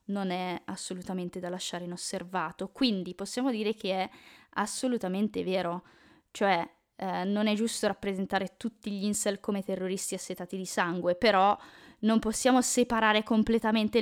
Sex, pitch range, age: female, 195-250 Hz, 20-39